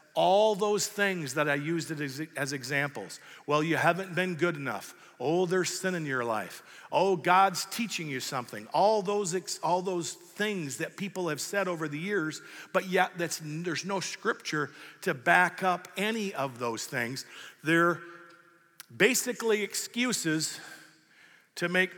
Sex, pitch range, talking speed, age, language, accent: male, 145-195 Hz, 150 wpm, 50-69, English, American